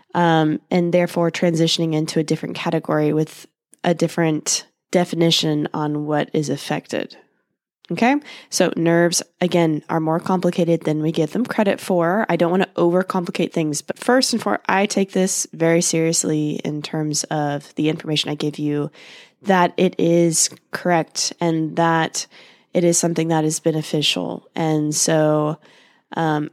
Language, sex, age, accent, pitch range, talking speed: English, female, 20-39, American, 155-185 Hz, 150 wpm